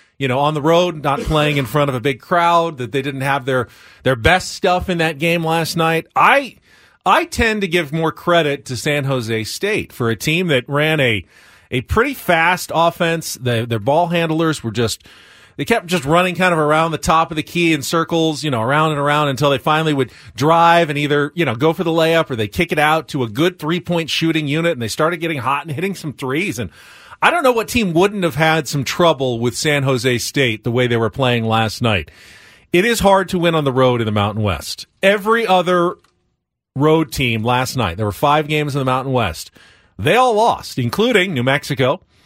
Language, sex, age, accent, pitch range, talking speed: English, male, 30-49, American, 130-170 Hz, 225 wpm